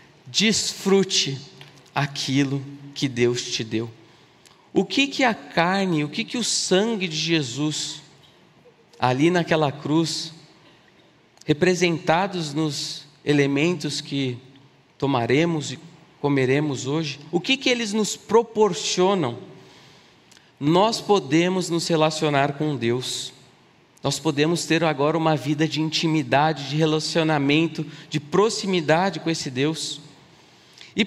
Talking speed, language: 110 wpm, Portuguese